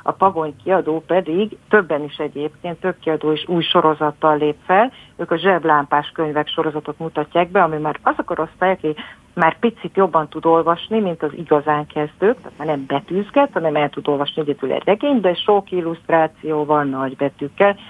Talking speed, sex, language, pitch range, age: 165 wpm, female, Hungarian, 150-170 Hz, 50-69